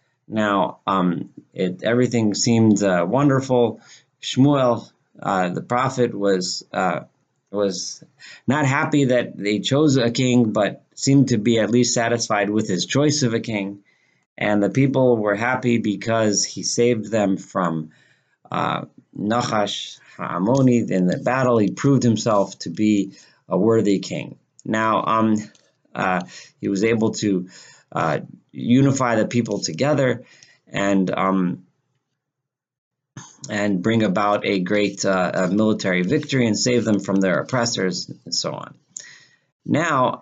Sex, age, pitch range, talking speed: male, 30-49, 100-130 Hz, 135 wpm